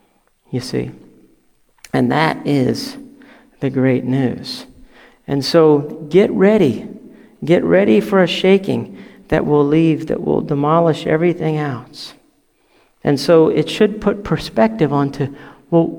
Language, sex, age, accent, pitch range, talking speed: English, male, 50-69, American, 140-195 Hz, 125 wpm